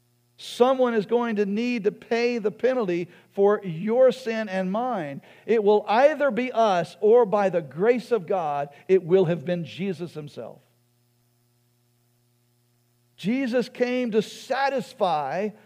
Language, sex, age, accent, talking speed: English, male, 50-69, American, 135 wpm